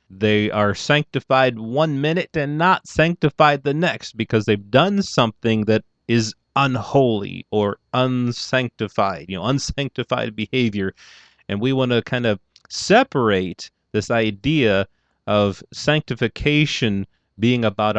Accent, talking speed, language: American, 120 wpm, English